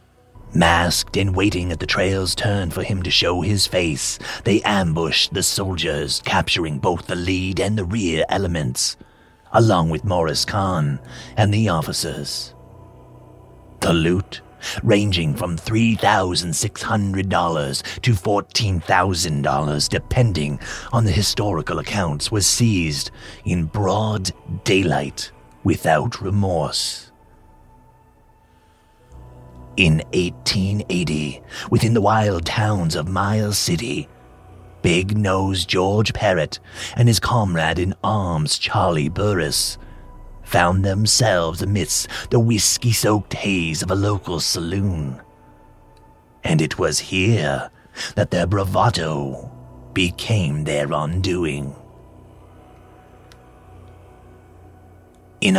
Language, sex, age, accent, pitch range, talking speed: English, male, 40-59, British, 80-105 Hz, 95 wpm